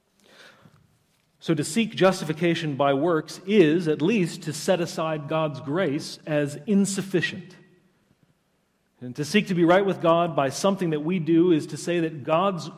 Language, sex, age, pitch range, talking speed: English, male, 40-59, 155-190 Hz, 160 wpm